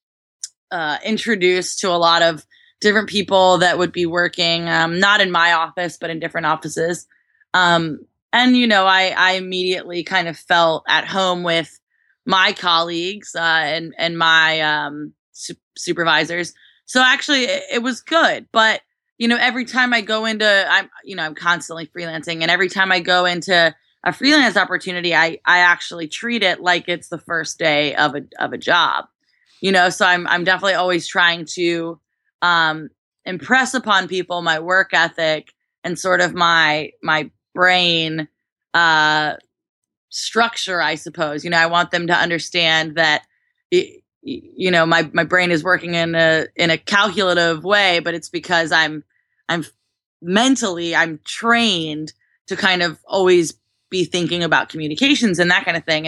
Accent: American